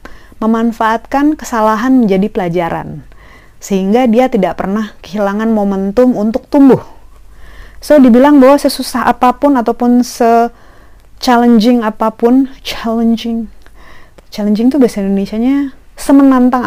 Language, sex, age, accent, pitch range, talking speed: Indonesian, female, 30-49, native, 195-255 Hz, 95 wpm